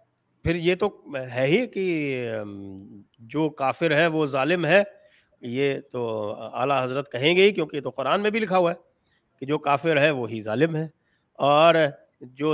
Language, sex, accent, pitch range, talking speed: English, male, Indian, 140-190 Hz, 165 wpm